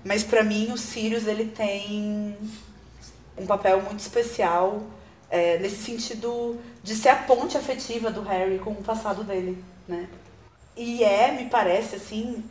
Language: Portuguese